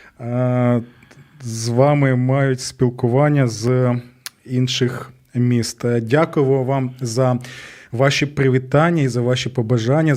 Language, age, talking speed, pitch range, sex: Ukrainian, 20-39, 90 wpm, 130-155 Hz, male